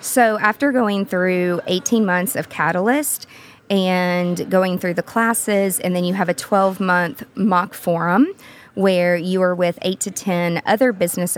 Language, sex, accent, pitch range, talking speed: English, female, American, 175-215 Hz, 160 wpm